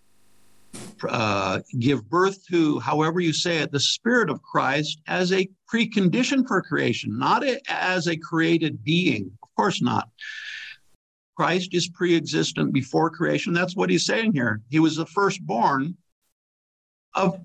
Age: 60-79